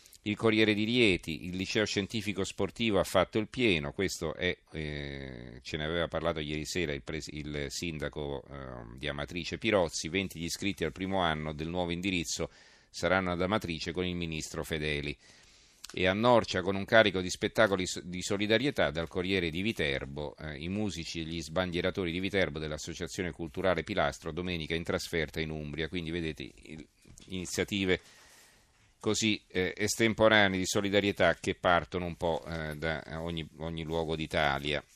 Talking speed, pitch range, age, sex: 160 wpm, 80-100 Hz, 40-59, male